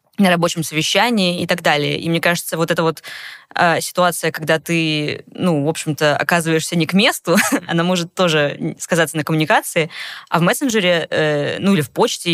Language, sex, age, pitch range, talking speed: Russian, female, 20-39, 160-185 Hz, 180 wpm